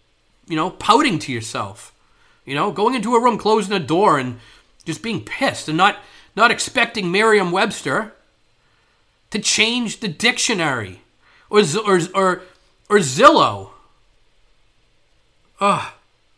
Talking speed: 120 wpm